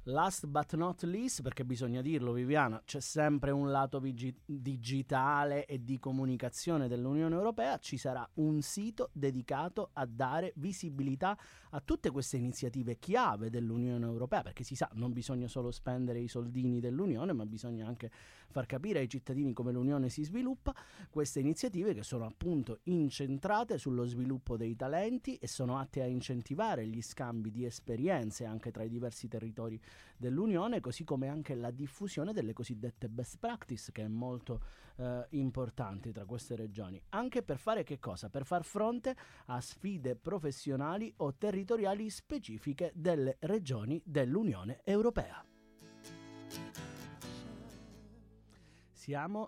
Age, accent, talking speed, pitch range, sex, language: 30-49, native, 140 wpm, 120-165 Hz, male, Italian